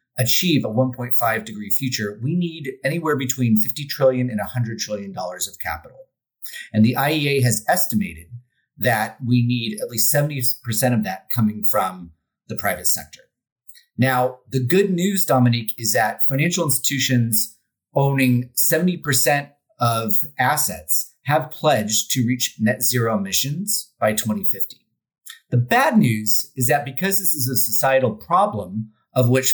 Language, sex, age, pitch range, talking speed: English, male, 30-49, 110-140 Hz, 140 wpm